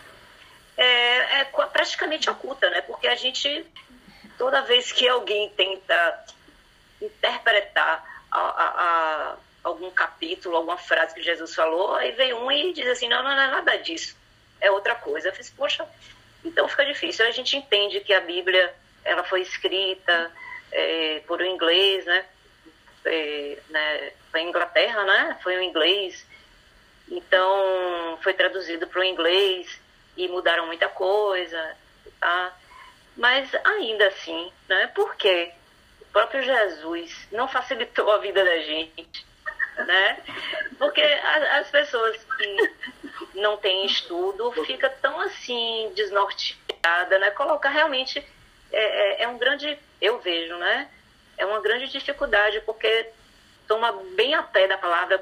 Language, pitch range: Portuguese, 180-285 Hz